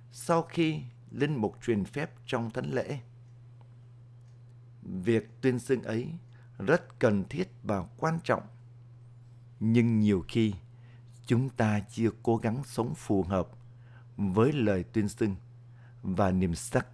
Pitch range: 110-120 Hz